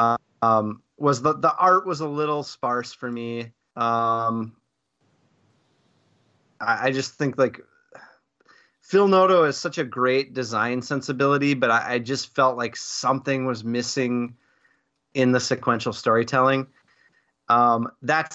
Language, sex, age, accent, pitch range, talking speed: English, male, 30-49, American, 120-145 Hz, 130 wpm